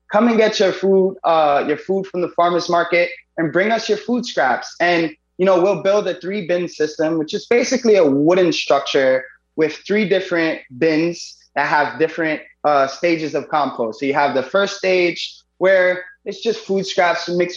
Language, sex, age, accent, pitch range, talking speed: English, male, 20-39, American, 145-185 Hz, 190 wpm